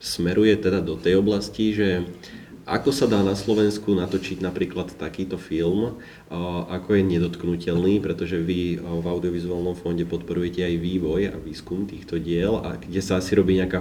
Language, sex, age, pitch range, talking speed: Slovak, male, 30-49, 85-100 Hz, 160 wpm